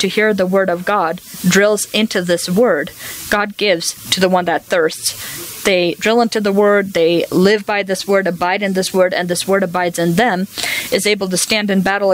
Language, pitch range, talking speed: English, 175-205 Hz, 215 wpm